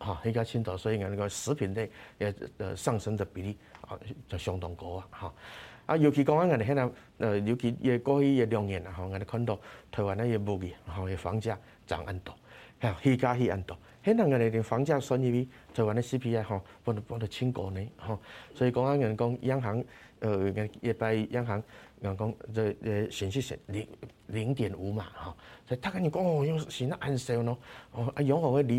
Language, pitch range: Chinese, 100-125 Hz